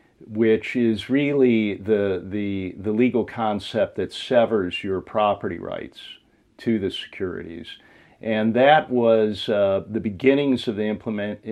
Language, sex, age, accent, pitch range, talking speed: English, male, 40-59, American, 100-120 Hz, 130 wpm